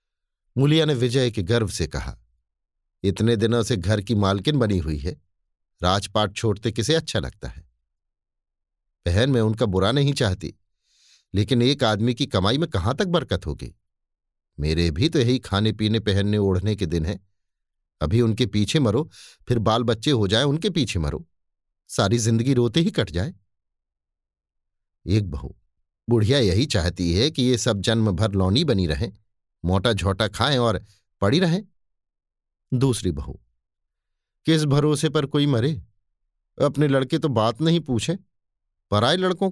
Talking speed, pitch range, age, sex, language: 155 wpm, 85-125 Hz, 50-69, male, Hindi